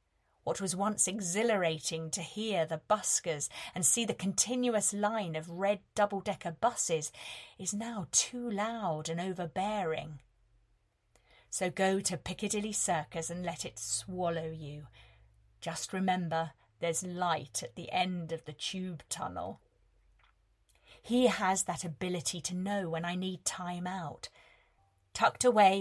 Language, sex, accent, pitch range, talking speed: English, female, British, 160-200 Hz, 135 wpm